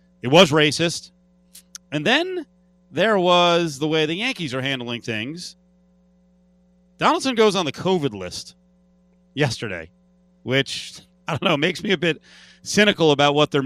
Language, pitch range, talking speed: English, 120-180 Hz, 145 wpm